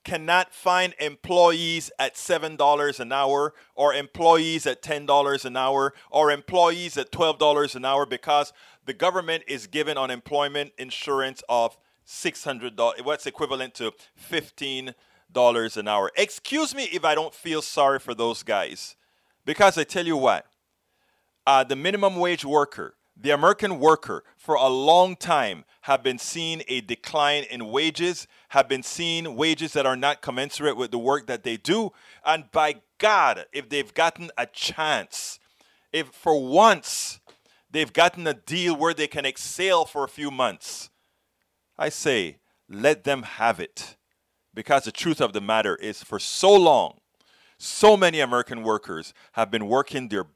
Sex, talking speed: male, 155 wpm